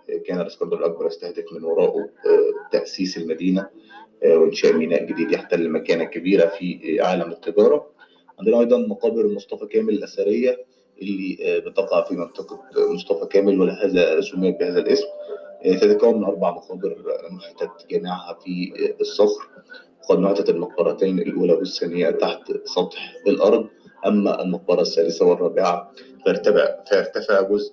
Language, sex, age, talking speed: Arabic, male, 30-49, 120 wpm